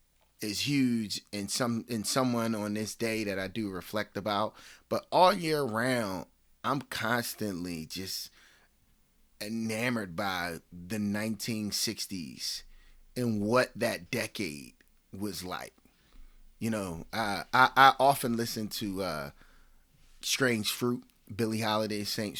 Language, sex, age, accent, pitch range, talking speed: English, male, 30-49, American, 90-120 Hz, 120 wpm